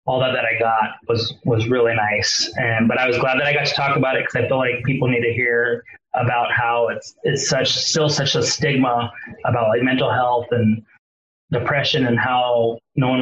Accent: American